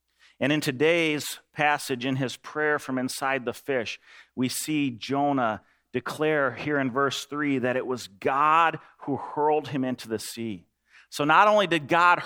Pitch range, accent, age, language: 130-205 Hz, American, 40-59, English